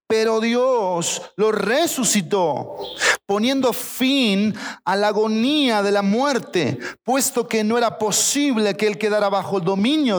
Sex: male